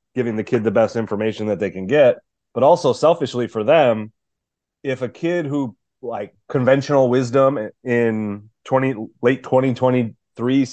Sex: male